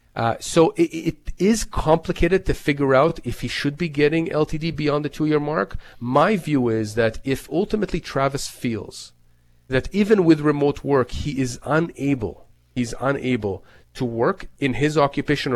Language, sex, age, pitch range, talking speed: English, male, 40-59, 125-155 Hz, 160 wpm